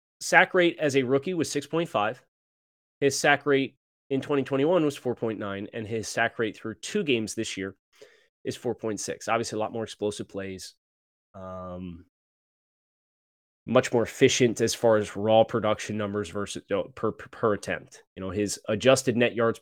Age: 20-39